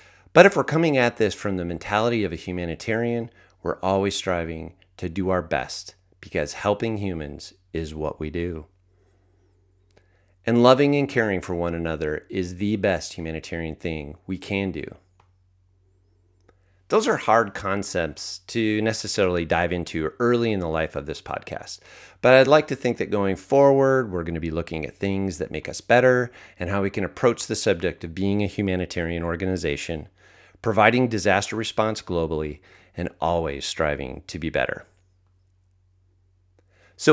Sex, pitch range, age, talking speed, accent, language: male, 85-110 Hz, 30-49, 160 wpm, American, English